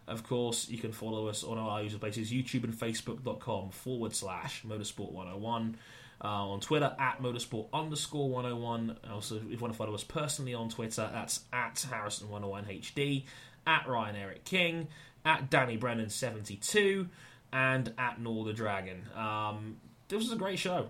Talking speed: 155 wpm